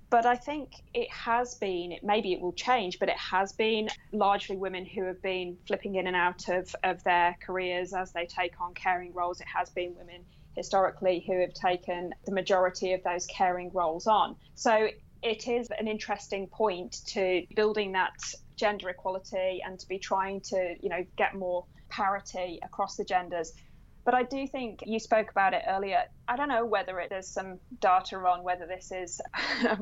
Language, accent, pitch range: English, British, 180-215 Hz